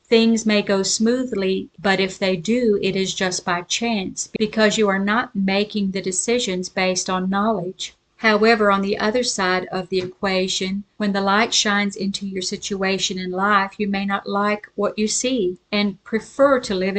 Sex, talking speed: female, 180 wpm